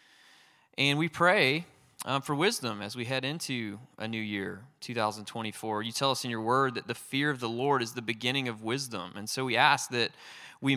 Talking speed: 205 wpm